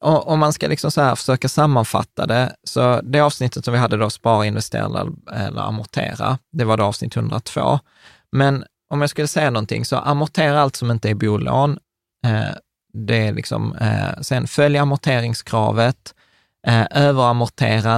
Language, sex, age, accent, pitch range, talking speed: Swedish, male, 20-39, native, 110-140 Hz, 150 wpm